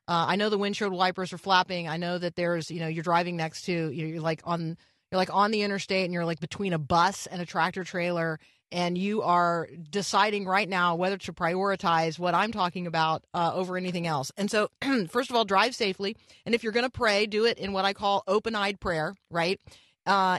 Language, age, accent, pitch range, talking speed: English, 30-49, American, 165-200 Hz, 225 wpm